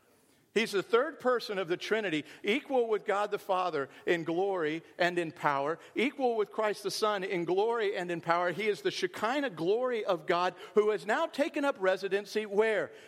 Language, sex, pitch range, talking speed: English, male, 190-295 Hz, 190 wpm